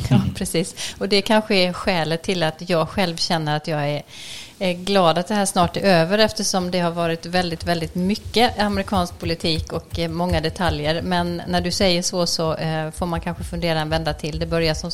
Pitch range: 170-210 Hz